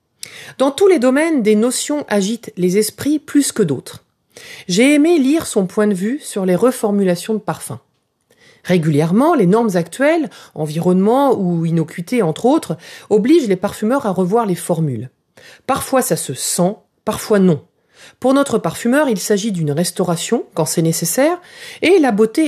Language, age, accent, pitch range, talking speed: French, 40-59, French, 175-255 Hz, 155 wpm